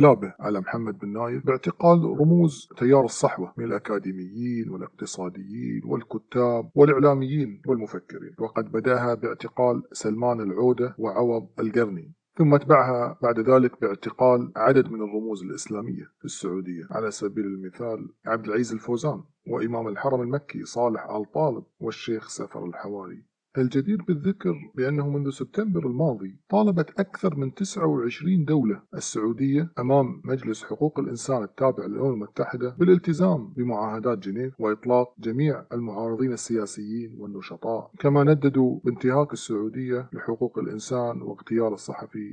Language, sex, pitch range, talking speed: Arabic, male, 110-140 Hz, 120 wpm